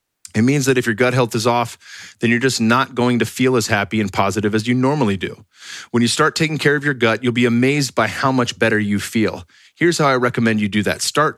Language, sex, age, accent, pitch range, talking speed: English, male, 30-49, American, 110-135 Hz, 260 wpm